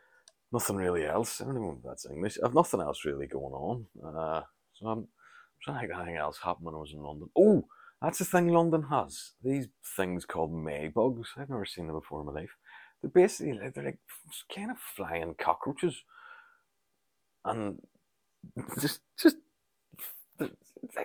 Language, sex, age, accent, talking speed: English, male, 30-49, British, 175 wpm